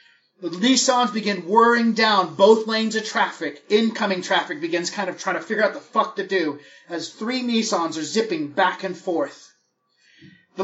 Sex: male